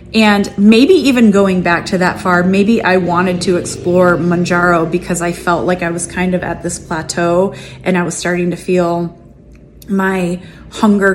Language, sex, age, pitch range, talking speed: English, female, 30-49, 175-190 Hz, 180 wpm